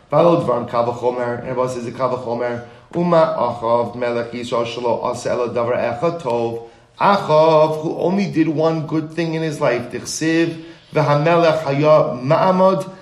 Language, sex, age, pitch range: English, male, 30-49, 115-150 Hz